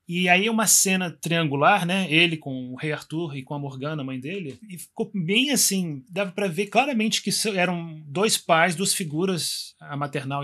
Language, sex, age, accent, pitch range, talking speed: Portuguese, male, 20-39, Brazilian, 145-180 Hz, 190 wpm